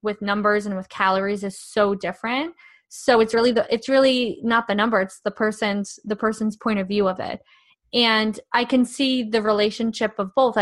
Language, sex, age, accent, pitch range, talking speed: English, female, 20-39, American, 205-245 Hz, 200 wpm